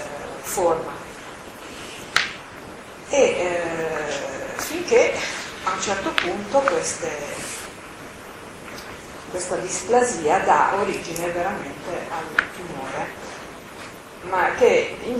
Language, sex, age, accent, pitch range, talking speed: Italian, female, 40-59, native, 175-240 Hz, 75 wpm